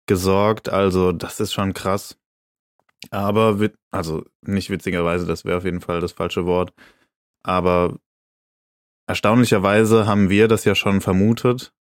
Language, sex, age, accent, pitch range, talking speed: German, male, 20-39, German, 90-100 Hz, 135 wpm